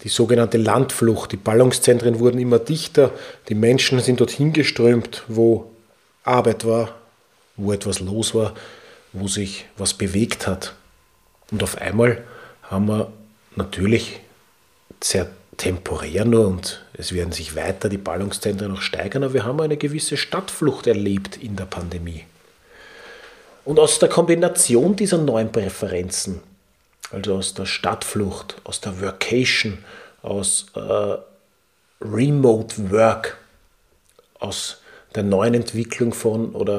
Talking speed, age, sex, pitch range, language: 125 wpm, 40-59, male, 100-130 Hz, German